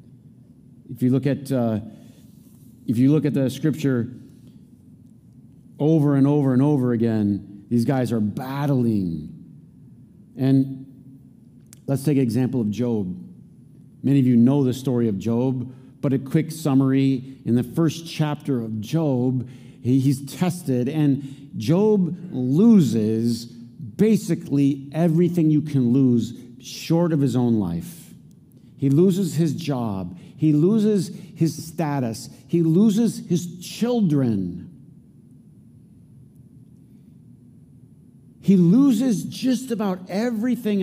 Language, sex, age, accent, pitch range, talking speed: English, male, 50-69, American, 125-165 Hz, 115 wpm